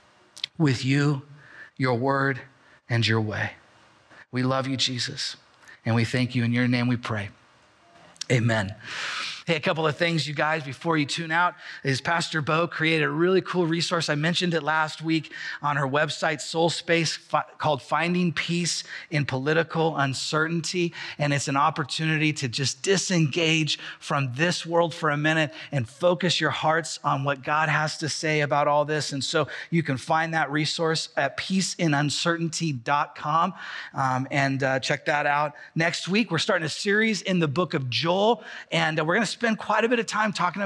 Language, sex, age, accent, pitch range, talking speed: English, male, 30-49, American, 140-175 Hz, 175 wpm